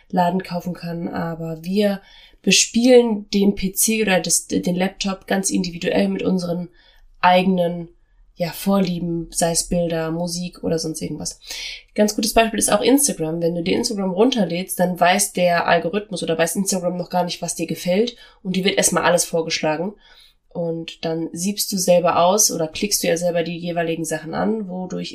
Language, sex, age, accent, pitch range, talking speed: German, female, 20-39, German, 170-210 Hz, 165 wpm